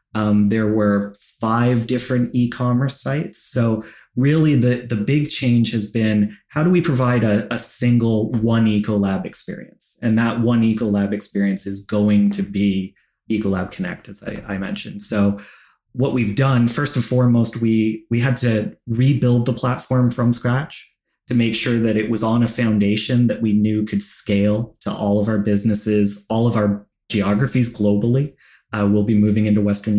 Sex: male